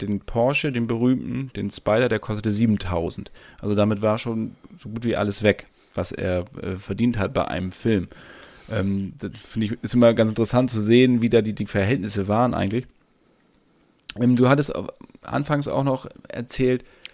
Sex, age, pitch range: male, 40-59, 105-120 Hz